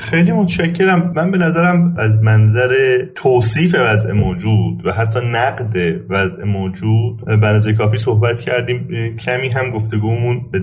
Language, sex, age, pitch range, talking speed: Persian, male, 30-49, 105-125 Hz, 130 wpm